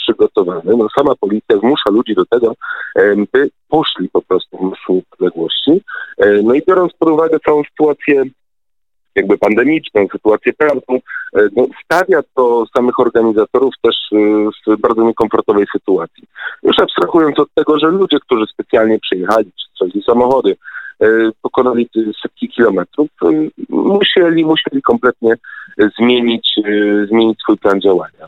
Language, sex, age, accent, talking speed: Polish, male, 40-59, native, 120 wpm